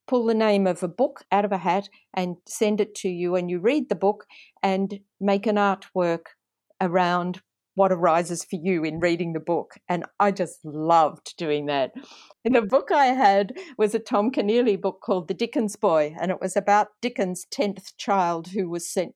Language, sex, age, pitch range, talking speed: English, female, 50-69, 180-215 Hz, 195 wpm